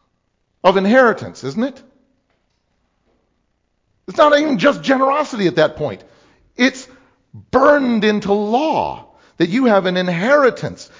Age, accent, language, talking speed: 50-69, American, English, 115 wpm